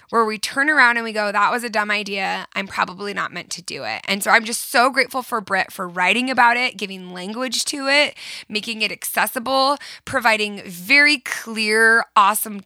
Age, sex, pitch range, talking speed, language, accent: 20-39, female, 210-270 Hz, 200 wpm, English, American